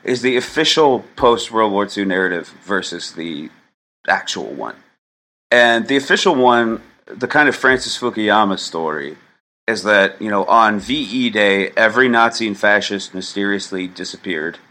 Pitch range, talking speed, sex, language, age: 95-115 Hz, 140 wpm, male, English, 30-49